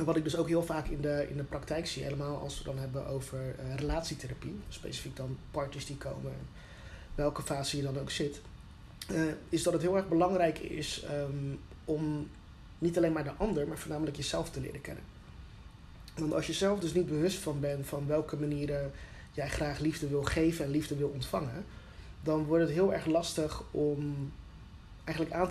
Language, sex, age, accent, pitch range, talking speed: Dutch, male, 20-39, Dutch, 140-165 Hz, 195 wpm